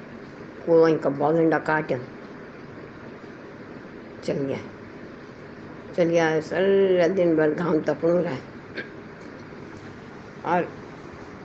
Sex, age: female, 60-79